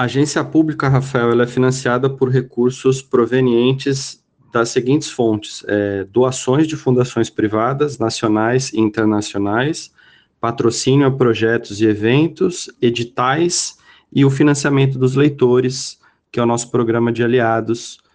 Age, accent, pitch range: 20-39, Brazilian, 110-130 Hz